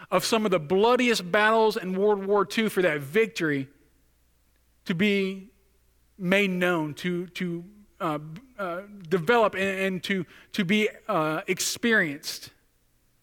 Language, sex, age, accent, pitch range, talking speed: English, male, 40-59, American, 150-230 Hz, 130 wpm